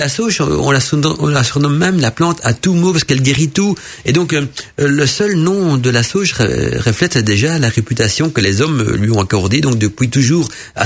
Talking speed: 205 wpm